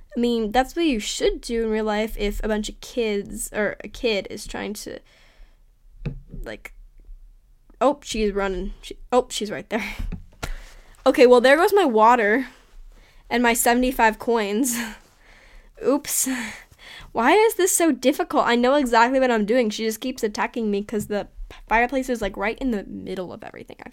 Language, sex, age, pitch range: English, female, 10-29, 215-265 Hz